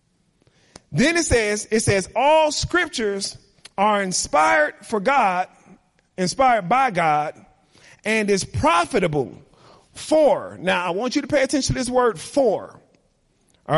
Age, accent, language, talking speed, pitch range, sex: 30-49, American, English, 130 wpm, 180-275 Hz, male